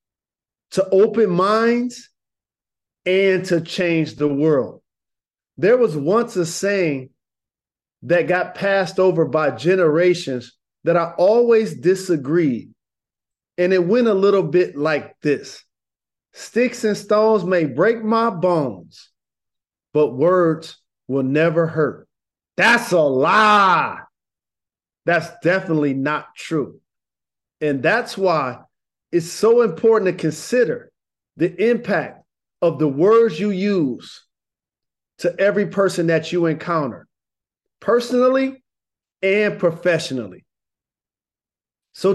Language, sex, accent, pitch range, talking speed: English, male, American, 155-215 Hz, 105 wpm